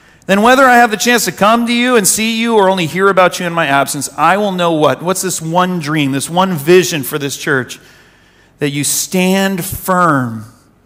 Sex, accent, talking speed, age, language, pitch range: male, American, 215 wpm, 40-59, English, 170-240 Hz